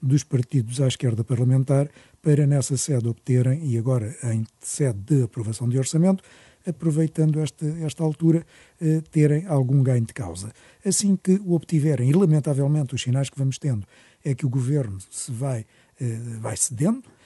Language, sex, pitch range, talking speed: Portuguese, male, 125-155 Hz, 155 wpm